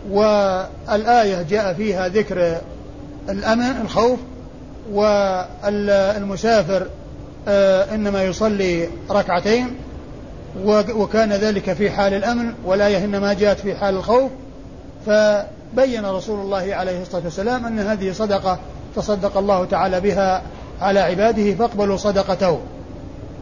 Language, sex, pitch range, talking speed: Arabic, male, 190-220 Hz, 95 wpm